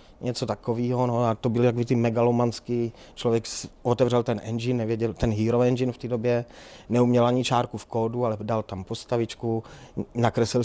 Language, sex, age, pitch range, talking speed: Czech, male, 30-49, 110-125 Hz, 160 wpm